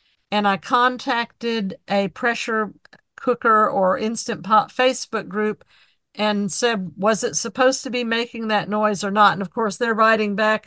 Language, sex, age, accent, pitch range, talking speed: English, female, 50-69, American, 200-235 Hz, 165 wpm